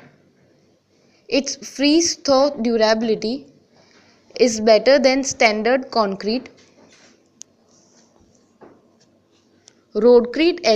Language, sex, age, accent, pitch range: English, female, 20-39, Indian, 225-270 Hz